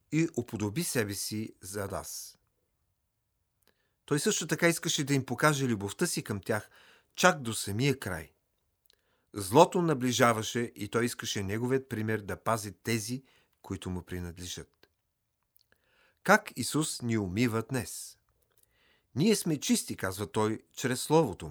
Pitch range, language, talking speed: 105-140 Hz, Bulgarian, 130 wpm